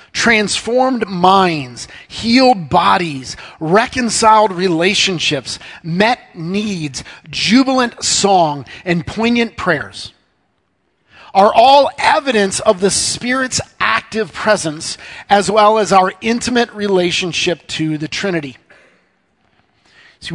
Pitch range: 170-230 Hz